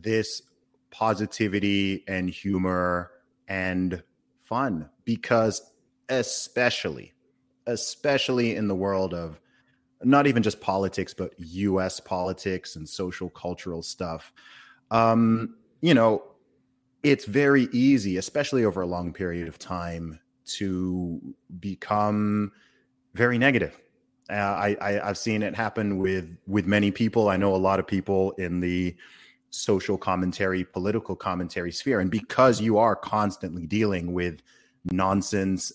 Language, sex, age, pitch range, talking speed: English, male, 30-49, 90-110 Hz, 125 wpm